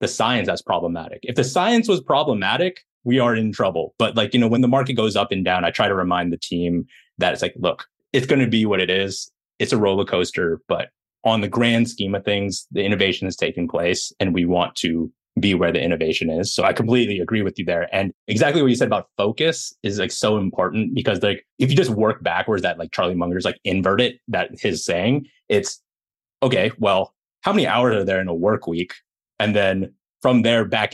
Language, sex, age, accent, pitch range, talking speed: English, male, 30-49, American, 95-125 Hz, 225 wpm